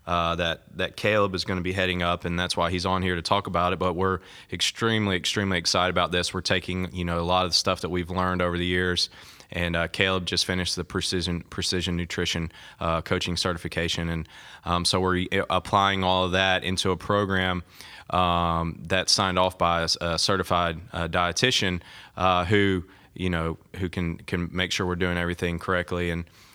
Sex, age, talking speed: male, 20-39, 200 wpm